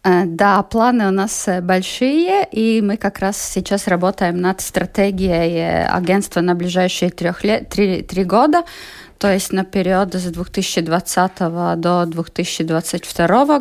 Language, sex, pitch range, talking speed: Russian, female, 180-225 Hz, 115 wpm